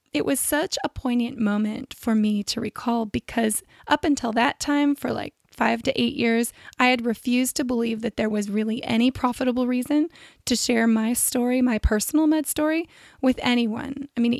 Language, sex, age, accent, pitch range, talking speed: English, female, 20-39, American, 225-275 Hz, 190 wpm